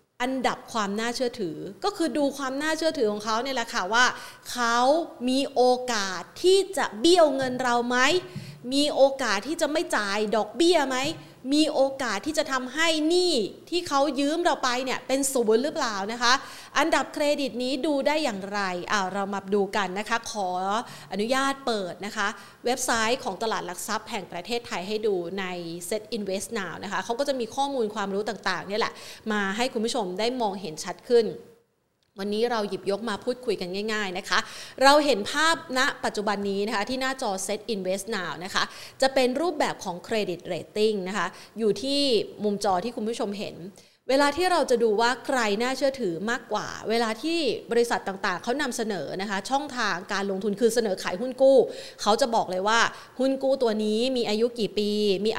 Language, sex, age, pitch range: Thai, female, 30-49, 205-270 Hz